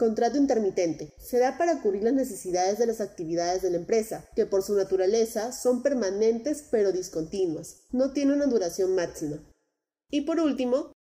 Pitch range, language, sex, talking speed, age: 180-240 Hz, Spanish, female, 155 wpm, 30-49